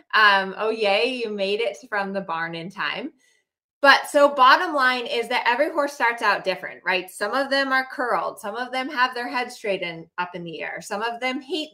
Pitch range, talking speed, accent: 185-240 Hz, 225 wpm, American